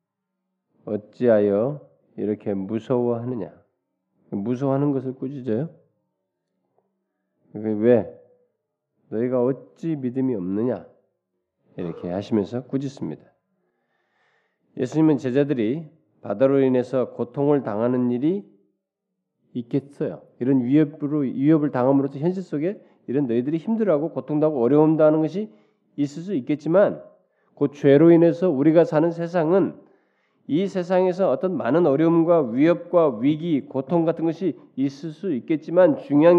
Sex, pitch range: male, 130-210 Hz